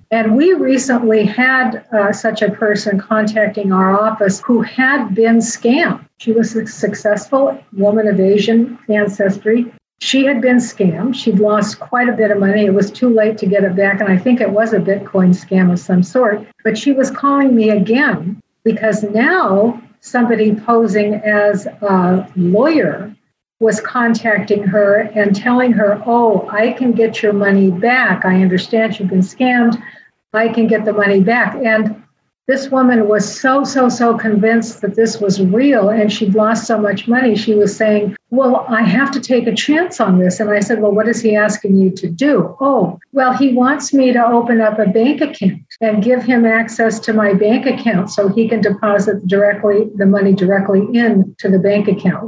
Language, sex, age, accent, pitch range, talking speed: English, female, 50-69, American, 205-235 Hz, 185 wpm